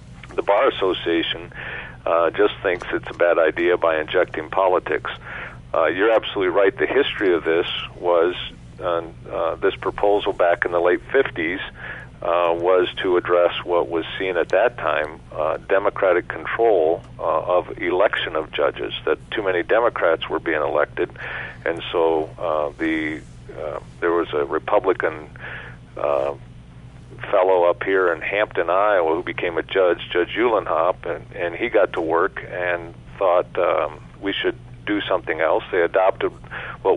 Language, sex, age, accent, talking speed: English, male, 50-69, American, 155 wpm